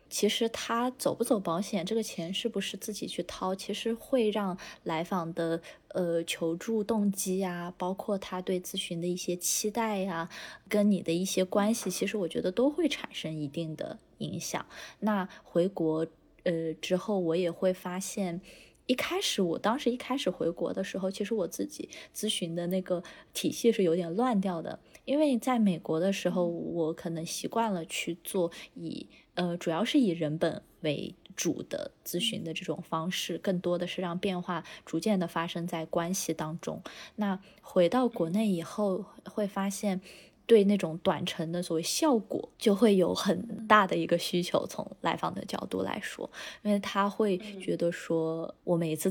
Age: 20-39